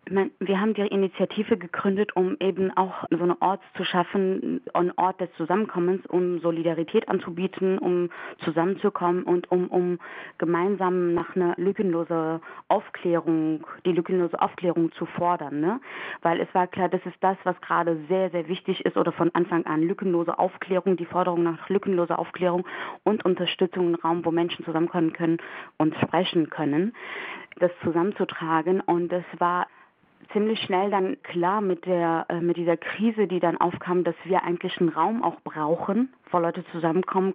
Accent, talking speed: German, 160 wpm